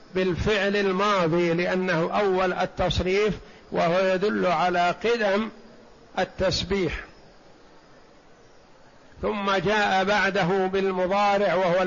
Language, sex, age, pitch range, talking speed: Arabic, male, 60-79, 165-195 Hz, 75 wpm